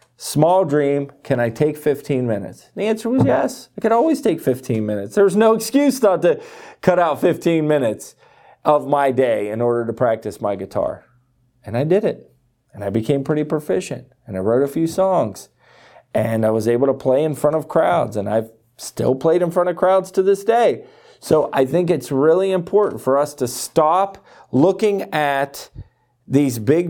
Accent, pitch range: American, 130-170 Hz